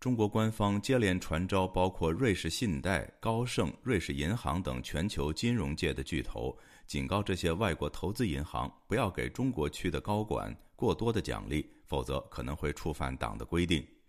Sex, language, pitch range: male, Chinese, 75-105 Hz